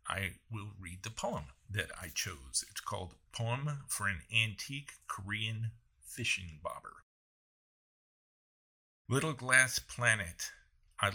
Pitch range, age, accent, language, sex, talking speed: 95-115 Hz, 50-69, American, English, male, 115 wpm